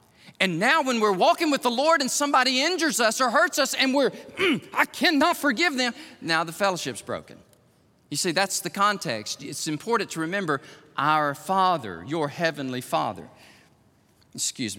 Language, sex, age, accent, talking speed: English, male, 40-59, American, 165 wpm